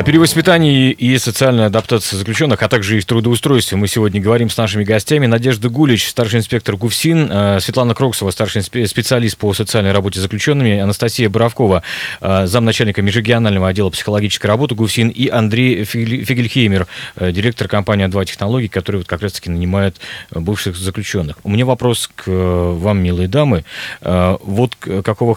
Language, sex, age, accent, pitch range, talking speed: Russian, male, 30-49, native, 95-120 Hz, 150 wpm